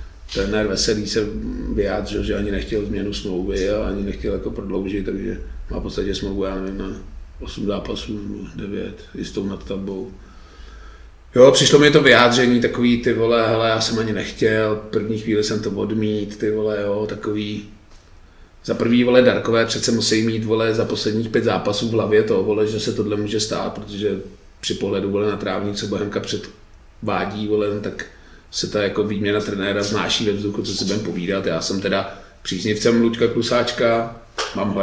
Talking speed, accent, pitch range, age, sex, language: 175 wpm, native, 100-110 Hz, 40-59, male, Czech